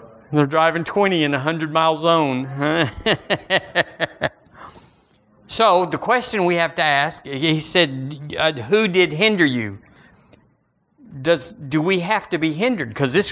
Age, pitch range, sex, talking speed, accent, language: 50-69, 140-180 Hz, male, 135 wpm, American, English